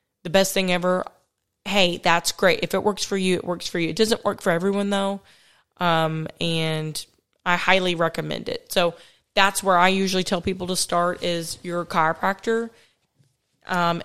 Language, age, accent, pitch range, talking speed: English, 20-39, American, 170-195 Hz, 175 wpm